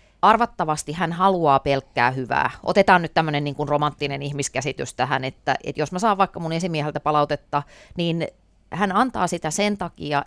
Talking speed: 160 wpm